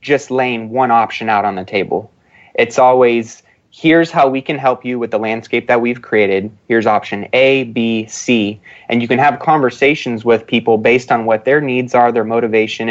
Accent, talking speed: American, 195 wpm